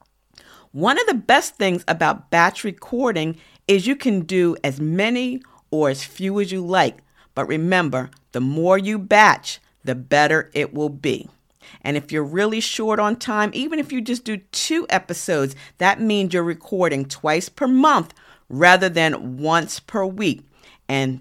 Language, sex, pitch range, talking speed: English, female, 140-205 Hz, 165 wpm